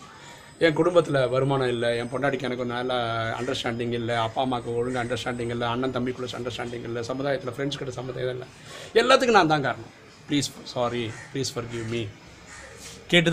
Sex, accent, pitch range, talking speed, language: male, native, 120-155 Hz, 160 wpm, Tamil